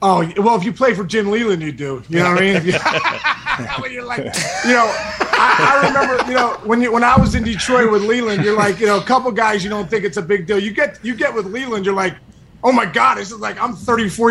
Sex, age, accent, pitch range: male, 20-39, American, 200-235 Hz